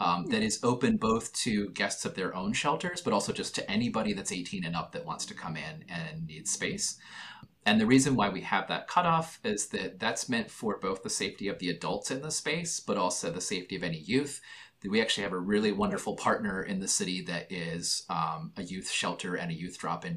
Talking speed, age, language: 230 wpm, 30-49, English